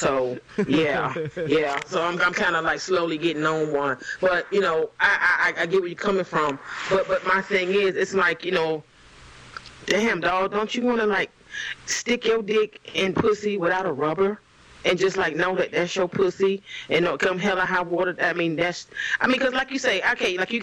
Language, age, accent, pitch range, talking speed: English, 30-49, American, 175-255 Hz, 215 wpm